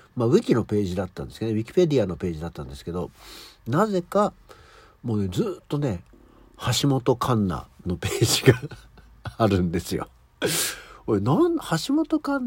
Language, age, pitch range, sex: Japanese, 60-79, 90-140 Hz, male